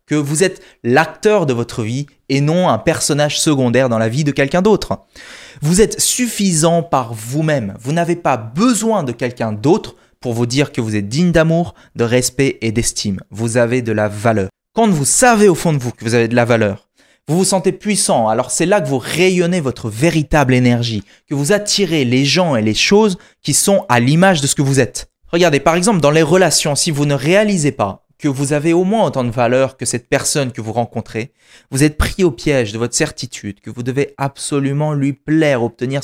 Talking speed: 215 wpm